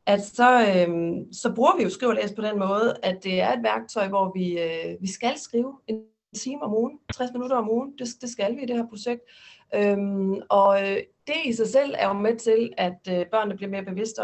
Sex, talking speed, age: female, 230 wpm, 40-59